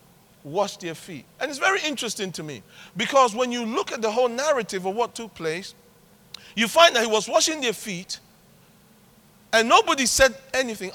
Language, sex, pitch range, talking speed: English, male, 195-270 Hz, 180 wpm